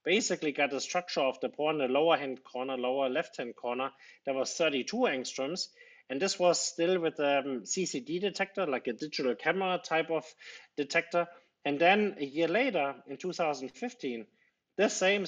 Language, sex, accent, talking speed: English, male, German, 180 wpm